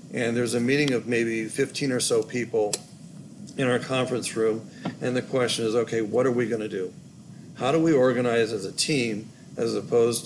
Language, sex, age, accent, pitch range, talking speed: English, male, 50-69, American, 110-130 Hz, 195 wpm